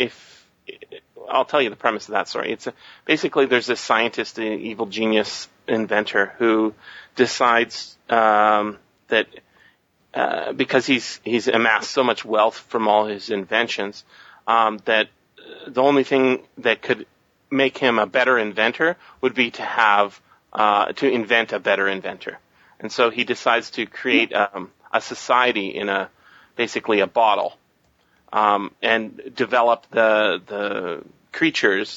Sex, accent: male, American